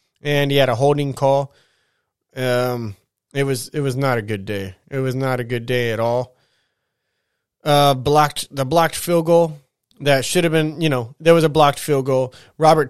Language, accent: English, American